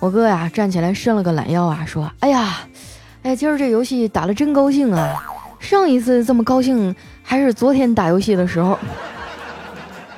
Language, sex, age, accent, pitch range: Chinese, female, 20-39, native, 175-250 Hz